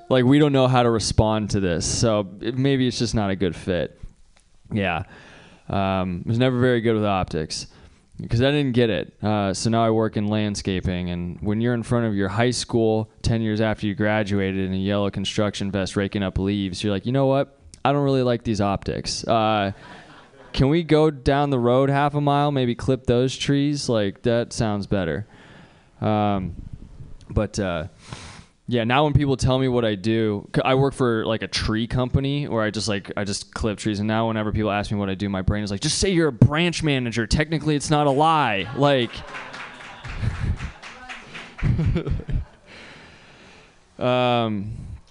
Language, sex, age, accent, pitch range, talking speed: English, male, 20-39, American, 100-130 Hz, 190 wpm